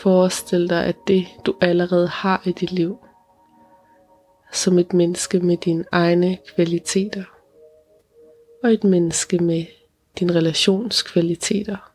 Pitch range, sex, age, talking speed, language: 180-210 Hz, female, 20-39, 115 wpm, Danish